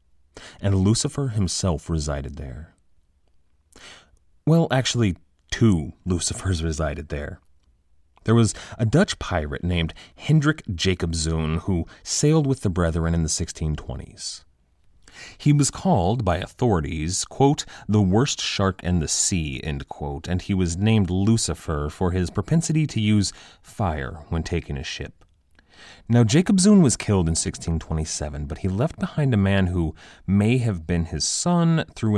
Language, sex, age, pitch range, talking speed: English, male, 30-49, 80-115 Hz, 145 wpm